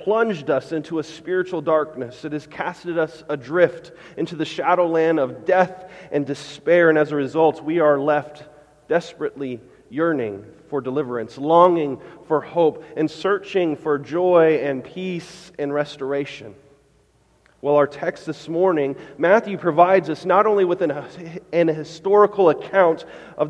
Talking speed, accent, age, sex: 145 wpm, American, 30-49, male